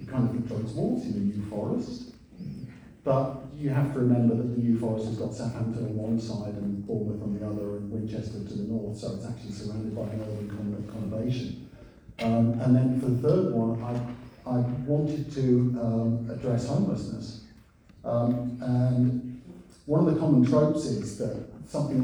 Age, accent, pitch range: 50-69, British, 110-130 Hz